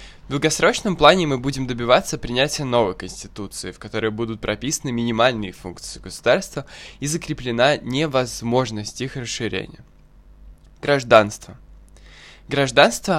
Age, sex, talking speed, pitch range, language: 10-29, male, 105 wpm, 110-140 Hz, Russian